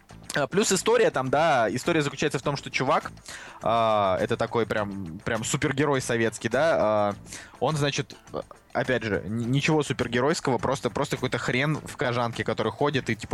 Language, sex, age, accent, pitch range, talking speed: Russian, male, 20-39, native, 115-150 Hz, 155 wpm